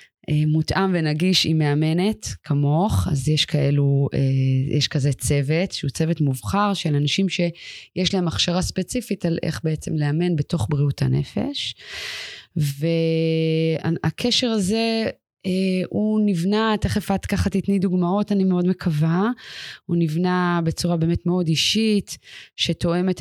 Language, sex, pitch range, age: Hebrew, female, 150-185 Hz, 20-39